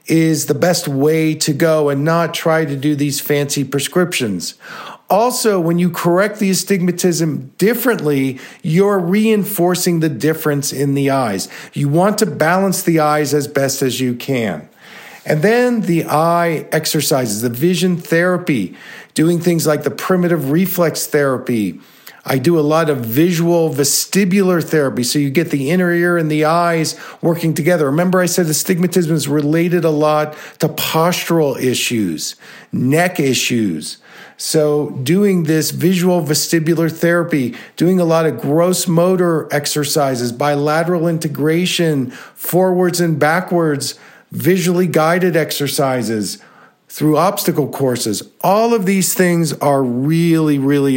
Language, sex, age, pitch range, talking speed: English, male, 50-69, 145-175 Hz, 140 wpm